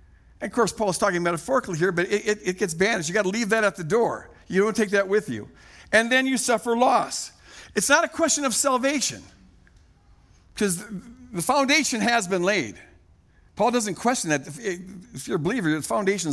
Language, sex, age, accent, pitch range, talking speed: English, male, 60-79, American, 180-255 Hz, 200 wpm